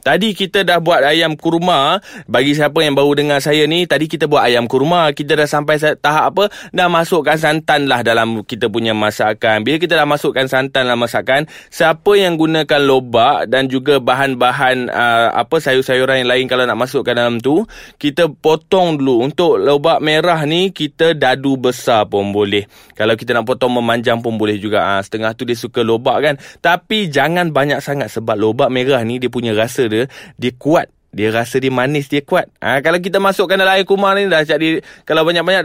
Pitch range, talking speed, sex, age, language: 125-170 Hz, 195 wpm, male, 20-39, Malay